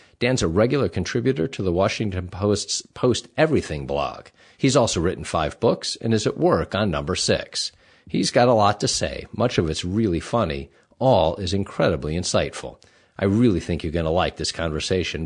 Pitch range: 85-130 Hz